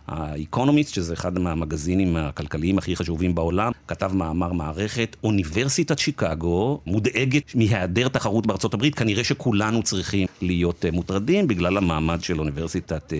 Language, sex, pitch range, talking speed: Hebrew, male, 85-110 Hz, 120 wpm